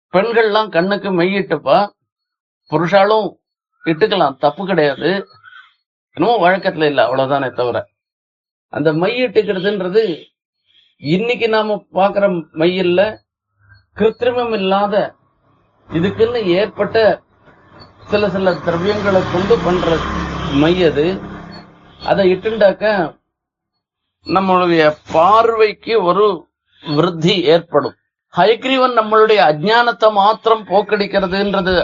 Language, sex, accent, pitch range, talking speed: Tamil, male, native, 150-205 Hz, 75 wpm